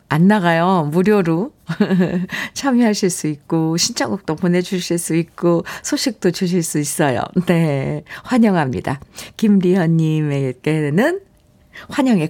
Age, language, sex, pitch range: 50-69, Korean, female, 160-220 Hz